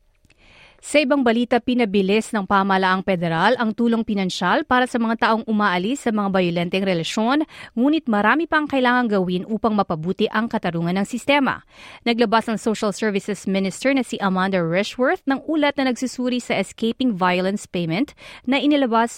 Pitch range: 185-245 Hz